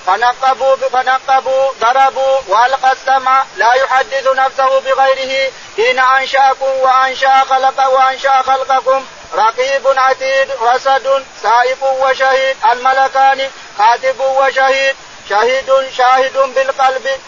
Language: Arabic